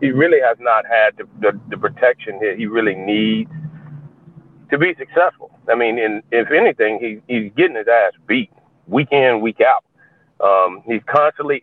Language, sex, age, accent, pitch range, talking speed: English, male, 40-59, American, 115-150 Hz, 175 wpm